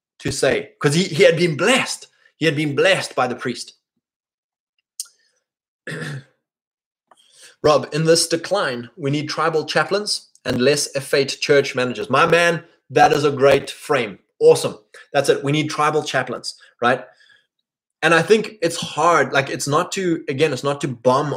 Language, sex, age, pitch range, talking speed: English, male, 20-39, 135-165 Hz, 160 wpm